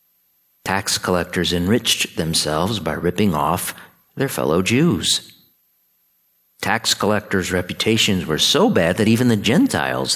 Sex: male